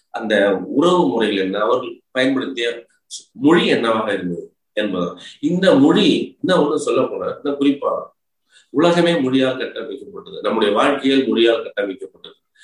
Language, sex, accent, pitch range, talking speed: Tamil, male, native, 130-175 Hz, 115 wpm